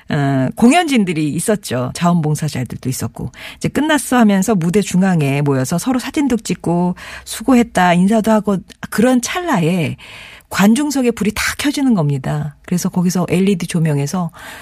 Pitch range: 150-220 Hz